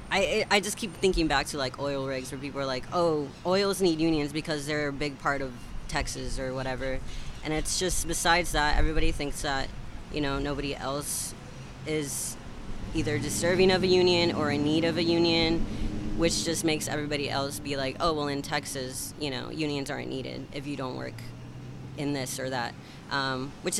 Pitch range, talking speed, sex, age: 130-160 Hz, 195 wpm, female, 20-39